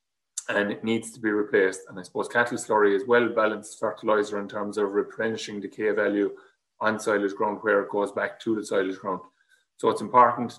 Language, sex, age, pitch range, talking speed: English, male, 30-49, 105-135 Hz, 195 wpm